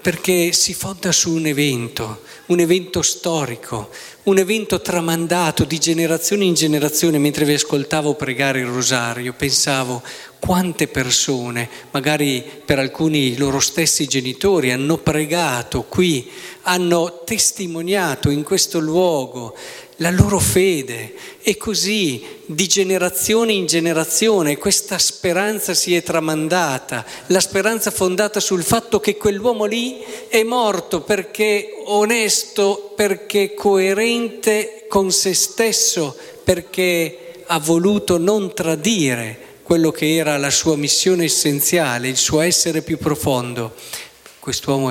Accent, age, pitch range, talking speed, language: native, 40-59, 145-195 Hz, 120 wpm, Italian